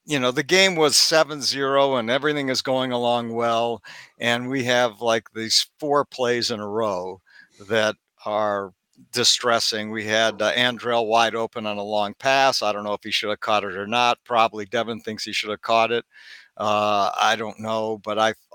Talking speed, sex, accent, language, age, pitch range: 195 wpm, male, American, English, 60-79, 105-125 Hz